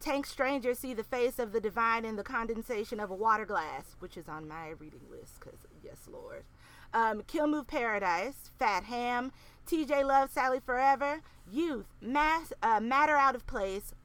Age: 30-49